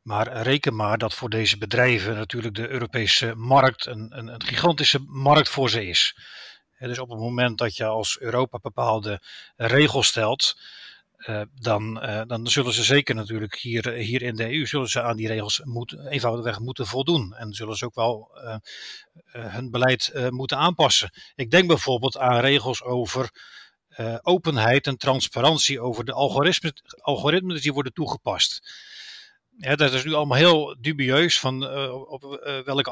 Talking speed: 165 wpm